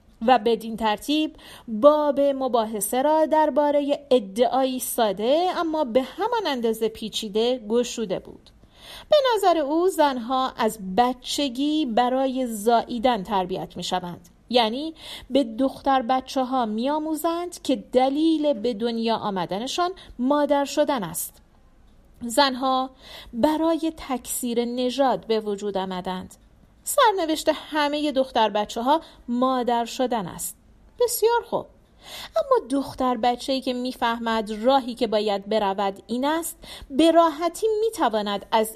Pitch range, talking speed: 235-310 Hz, 110 wpm